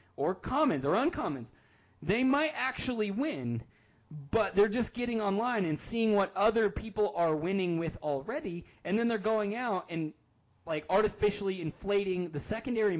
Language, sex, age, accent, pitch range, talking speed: English, male, 20-39, American, 135-185 Hz, 150 wpm